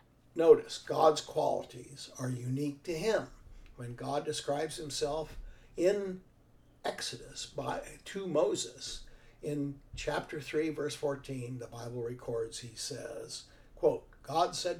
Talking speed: 120 wpm